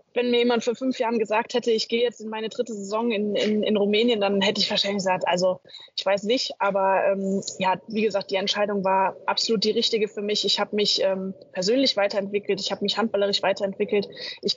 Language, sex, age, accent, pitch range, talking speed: German, female, 20-39, German, 195-225 Hz, 220 wpm